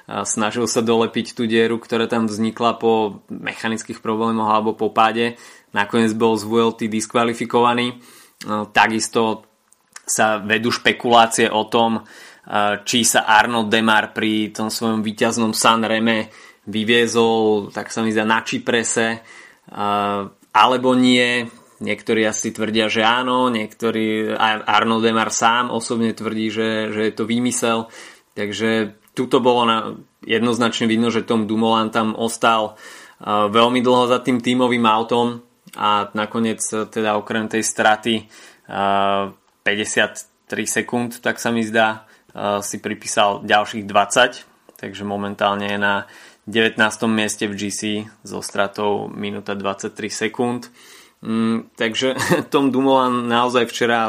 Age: 20-39